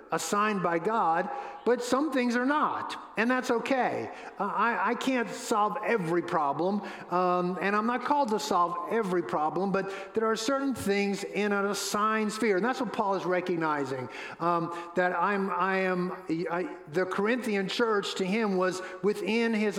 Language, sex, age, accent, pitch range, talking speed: English, male, 50-69, American, 180-210 Hz, 170 wpm